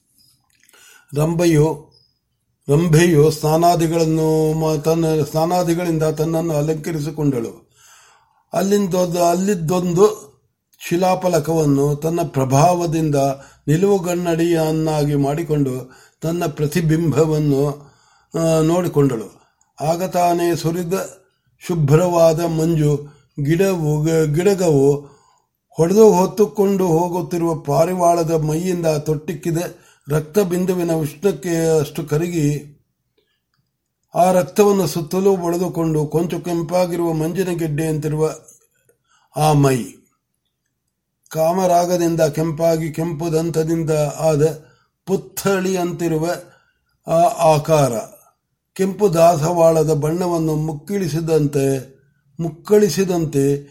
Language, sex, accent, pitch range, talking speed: Marathi, male, native, 155-175 Hz, 45 wpm